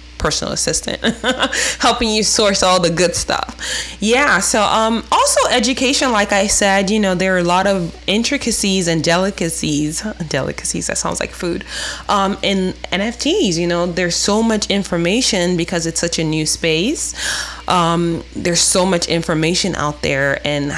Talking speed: 160 wpm